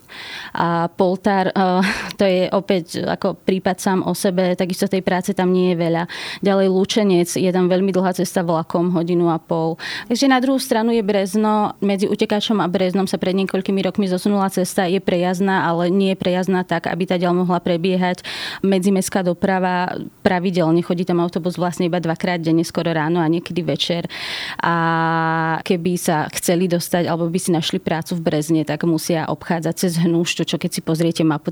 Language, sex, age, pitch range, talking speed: Slovak, female, 20-39, 170-195 Hz, 175 wpm